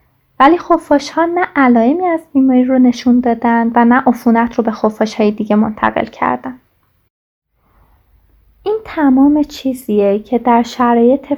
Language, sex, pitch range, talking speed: Persian, female, 225-260 Hz, 130 wpm